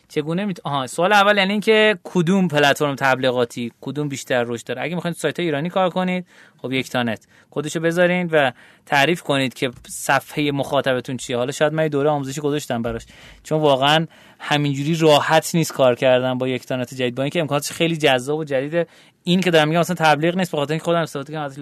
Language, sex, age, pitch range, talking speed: Persian, male, 30-49, 130-180 Hz, 190 wpm